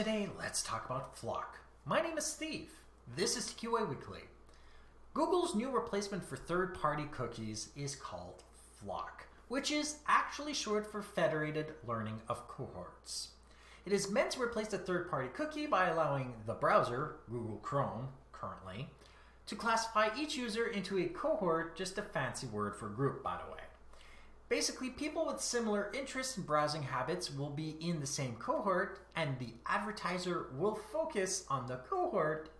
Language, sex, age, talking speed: English, male, 30-49, 155 wpm